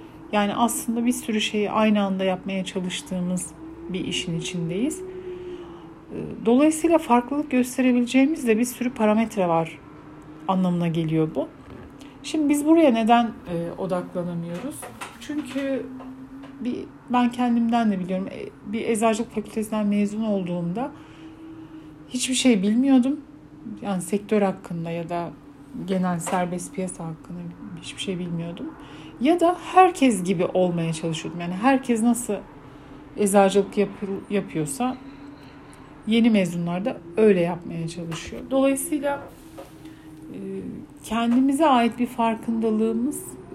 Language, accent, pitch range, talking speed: Turkish, native, 175-250 Hz, 105 wpm